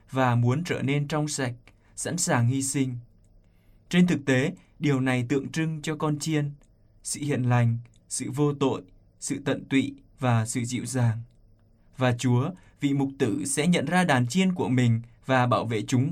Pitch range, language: 115-155 Hz, Vietnamese